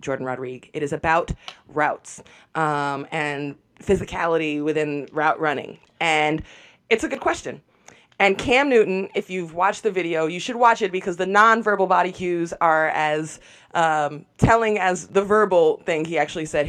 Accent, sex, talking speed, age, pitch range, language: American, female, 160 wpm, 20-39, 160-220 Hz, English